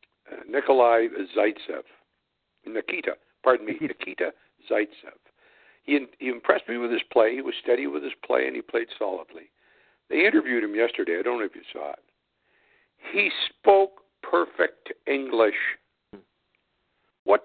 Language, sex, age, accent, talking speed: English, male, 60-79, American, 140 wpm